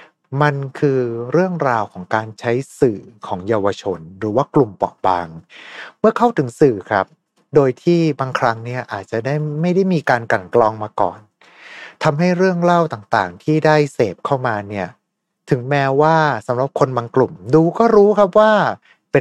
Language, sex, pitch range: Thai, male, 110-155 Hz